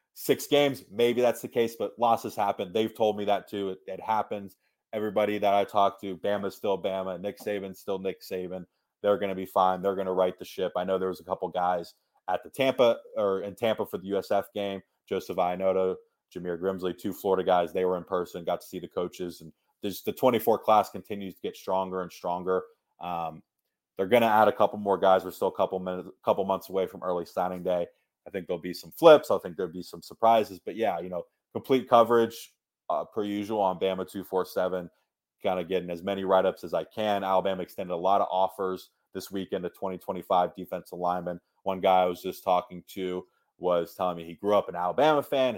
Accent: American